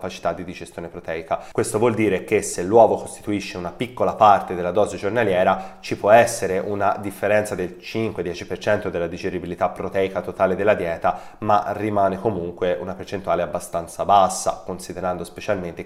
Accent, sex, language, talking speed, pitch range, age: native, male, Italian, 150 wpm, 90-105 Hz, 30-49